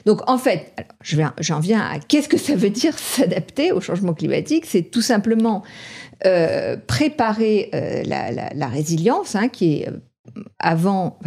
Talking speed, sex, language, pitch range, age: 140 wpm, female, French, 170-235 Hz, 50-69